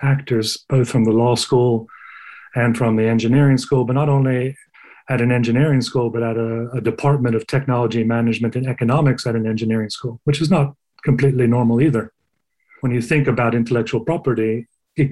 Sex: male